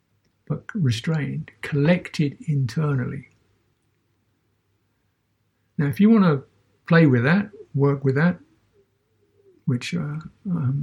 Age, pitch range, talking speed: 60-79, 125-170 Hz, 95 wpm